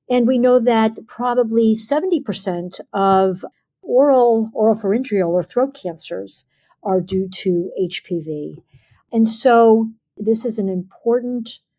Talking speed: 115 wpm